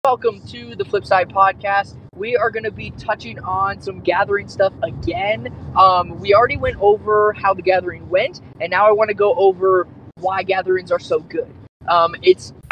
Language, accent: English, American